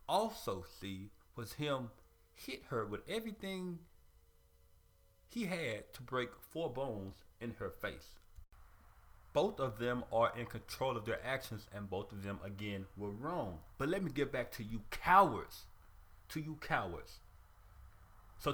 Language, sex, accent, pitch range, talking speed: English, male, American, 100-155 Hz, 145 wpm